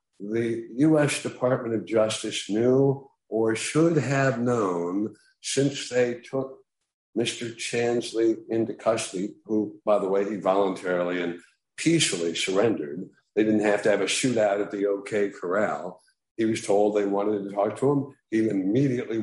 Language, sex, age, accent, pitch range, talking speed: English, male, 60-79, American, 105-135 Hz, 150 wpm